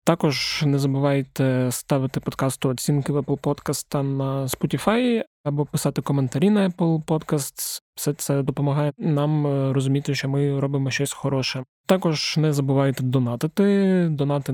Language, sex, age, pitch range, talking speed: Ukrainian, male, 20-39, 130-150 Hz, 130 wpm